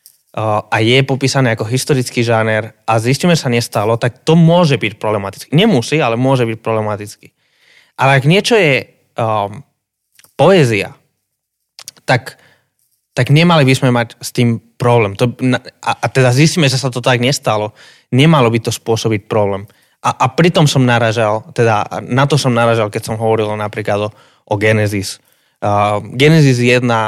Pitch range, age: 110-135 Hz, 20-39